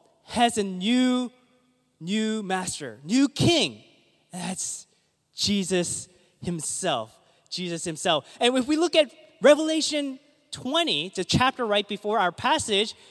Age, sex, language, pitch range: 20-39, male, English, 190-290 Hz